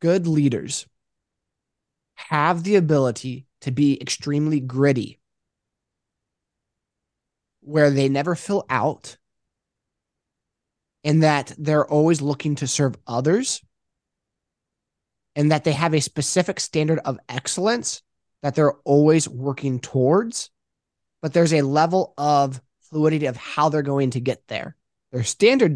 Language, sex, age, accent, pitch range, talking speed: English, male, 20-39, American, 130-155 Hz, 120 wpm